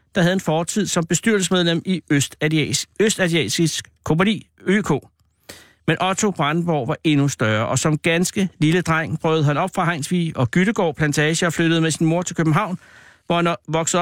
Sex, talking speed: male, 165 wpm